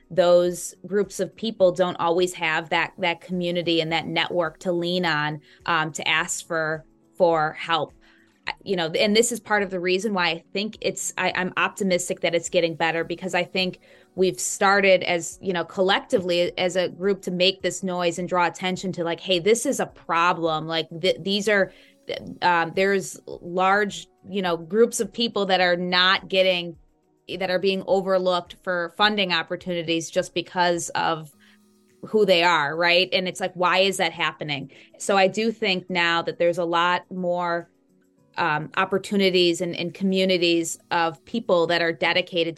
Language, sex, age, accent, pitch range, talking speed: English, female, 20-39, American, 170-190 Hz, 180 wpm